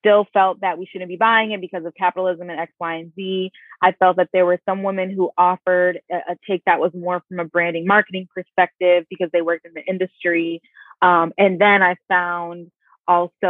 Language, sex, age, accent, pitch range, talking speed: English, female, 20-39, American, 175-195 Hz, 215 wpm